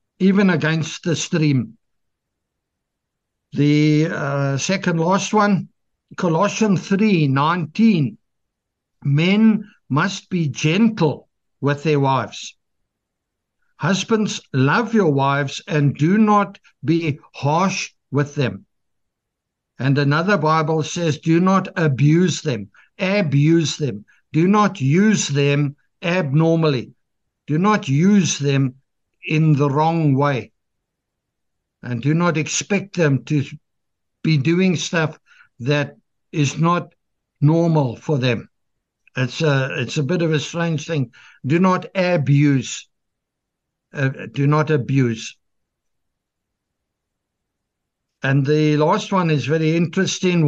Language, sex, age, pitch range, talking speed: English, male, 60-79, 140-185 Hz, 105 wpm